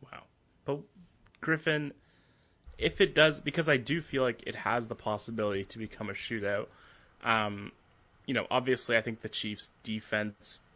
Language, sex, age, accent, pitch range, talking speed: English, male, 20-39, American, 105-135 Hz, 155 wpm